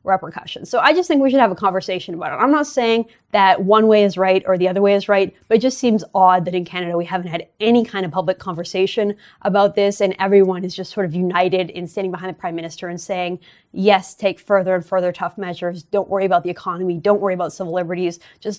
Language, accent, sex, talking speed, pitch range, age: English, American, female, 250 wpm, 180-210 Hz, 20-39